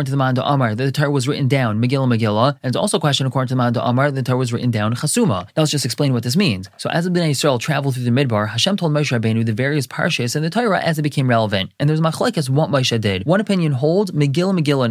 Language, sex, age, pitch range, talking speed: English, male, 20-39, 125-150 Hz, 275 wpm